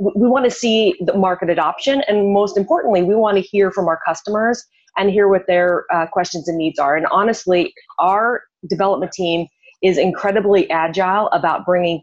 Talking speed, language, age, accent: 180 wpm, English, 30-49, American